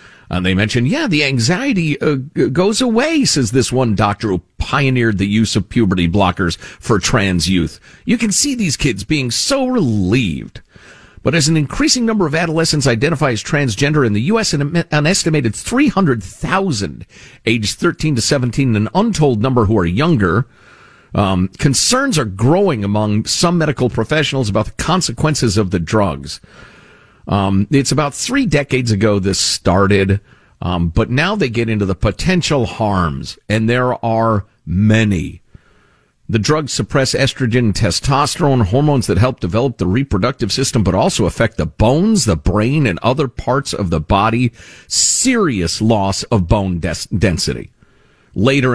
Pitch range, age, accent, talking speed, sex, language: 100-150 Hz, 50-69, American, 155 wpm, male, English